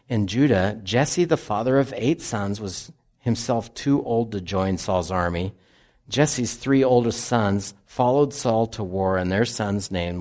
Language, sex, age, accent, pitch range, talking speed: English, male, 50-69, American, 100-125 Hz, 165 wpm